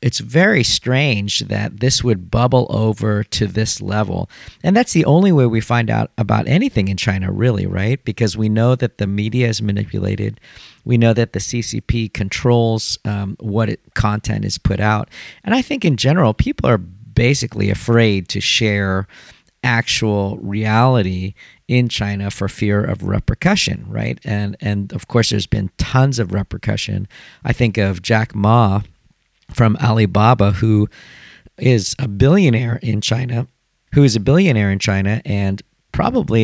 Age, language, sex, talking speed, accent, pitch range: 40-59, English, male, 160 wpm, American, 100-120 Hz